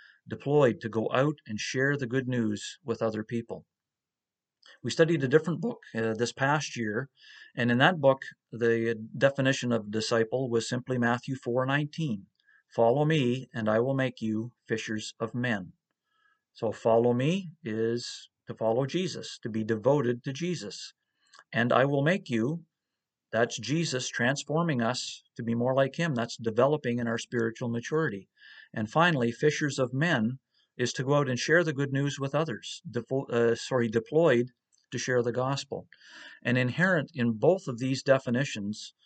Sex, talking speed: male, 165 wpm